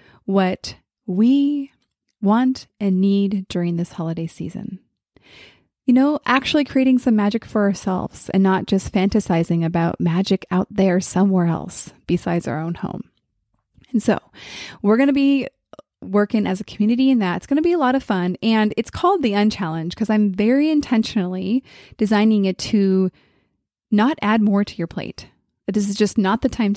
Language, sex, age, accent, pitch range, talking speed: English, female, 20-39, American, 180-225 Hz, 170 wpm